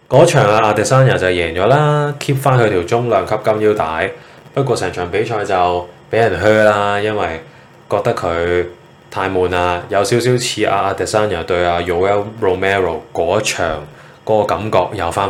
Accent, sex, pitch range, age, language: native, male, 95-130 Hz, 20-39, Chinese